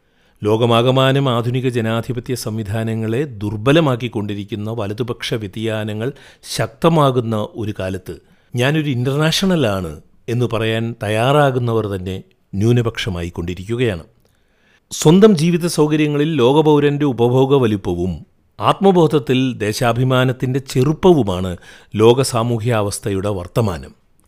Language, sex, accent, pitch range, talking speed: Malayalam, male, native, 105-135 Hz, 70 wpm